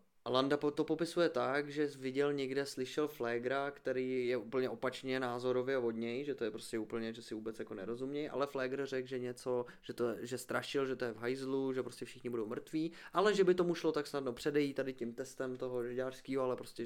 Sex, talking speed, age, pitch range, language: male, 215 wpm, 20-39, 120-135 Hz, Czech